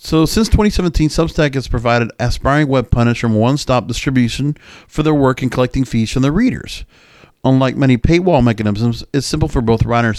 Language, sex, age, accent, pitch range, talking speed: English, male, 50-69, American, 120-155 Hz, 185 wpm